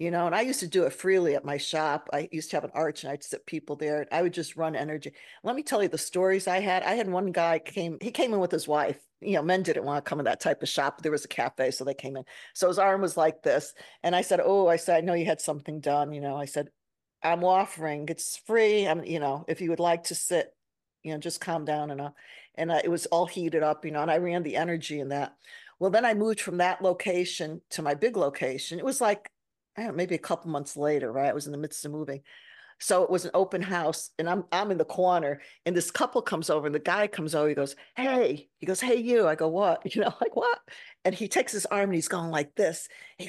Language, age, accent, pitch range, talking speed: English, 50-69, American, 155-190 Hz, 275 wpm